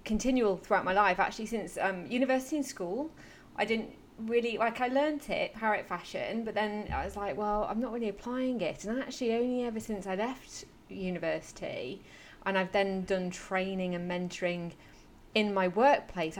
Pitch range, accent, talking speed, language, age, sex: 185-235 Hz, British, 175 wpm, English, 30-49, female